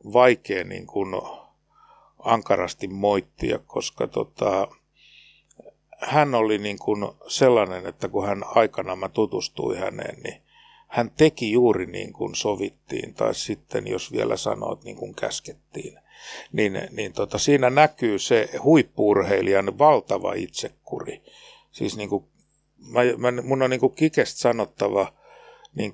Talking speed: 115 wpm